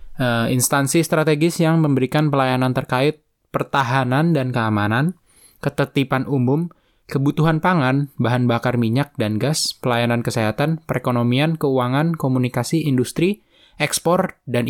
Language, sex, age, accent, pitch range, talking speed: Indonesian, male, 10-29, native, 120-150 Hz, 110 wpm